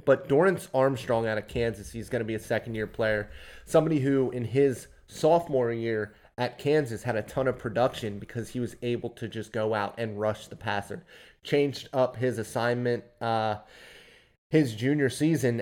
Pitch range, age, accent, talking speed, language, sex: 110-125 Hz, 20-39, American, 175 wpm, English, male